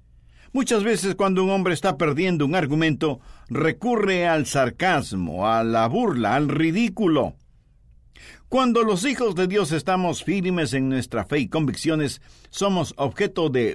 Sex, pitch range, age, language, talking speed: male, 115-185 Hz, 50-69, Spanish, 140 wpm